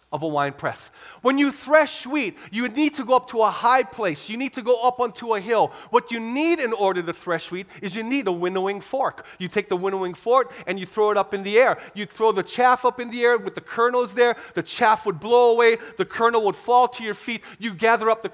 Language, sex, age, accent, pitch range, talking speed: English, male, 30-49, American, 170-225 Hz, 260 wpm